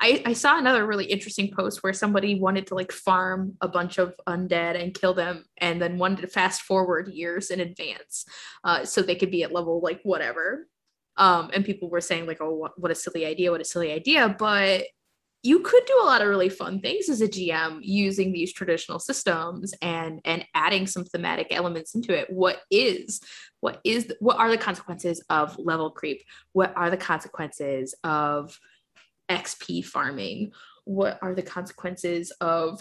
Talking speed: 190 wpm